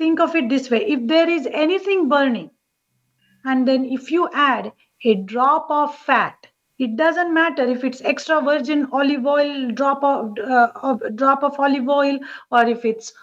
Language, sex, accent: English, female, Indian